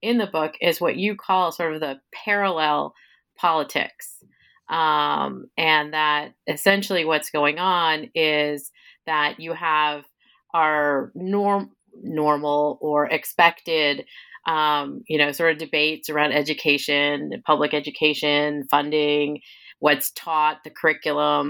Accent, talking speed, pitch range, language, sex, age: American, 120 wpm, 150-175 Hz, English, female, 30-49